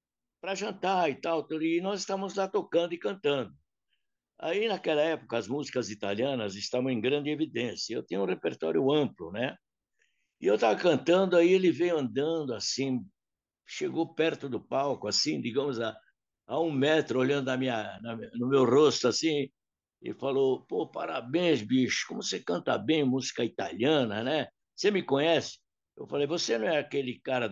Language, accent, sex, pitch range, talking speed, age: Portuguese, Brazilian, male, 130-165 Hz, 165 wpm, 60-79